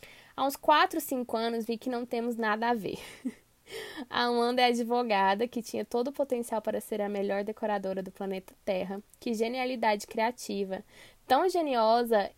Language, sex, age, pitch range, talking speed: Portuguese, female, 10-29, 200-240 Hz, 165 wpm